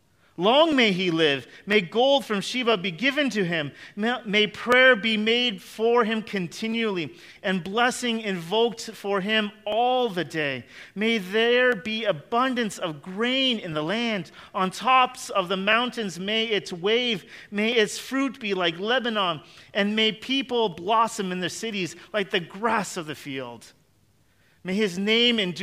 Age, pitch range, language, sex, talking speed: 40-59, 175-230 Hz, English, male, 155 wpm